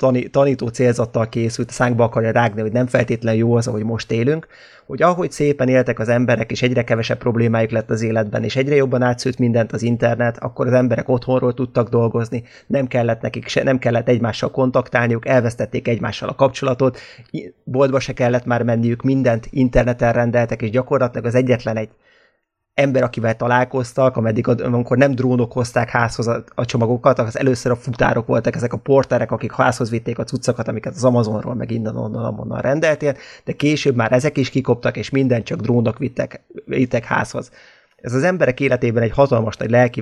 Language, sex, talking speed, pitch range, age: Hungarian, male, 180 wpm, 120-135 Hz, 30-49